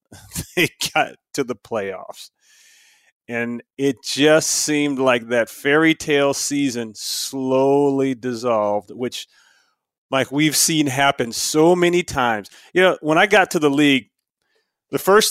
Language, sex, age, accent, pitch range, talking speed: English, male, 30-49, American, 140-195 Hz, 135 wpm